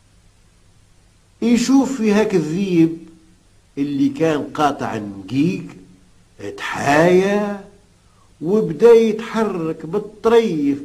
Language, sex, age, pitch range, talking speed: Arabic, male, 50-69, 95-160 Hz, 65 wpm